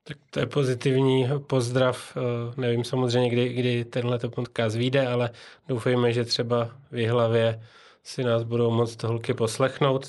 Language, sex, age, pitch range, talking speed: Czech, male, 20-39, 120-130 Hz, 135 wpm